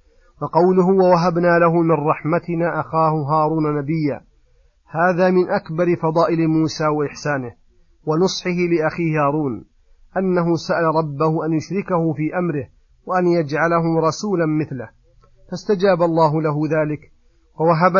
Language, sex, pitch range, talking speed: Arabic, male, 150-170 Hz, 110 wpm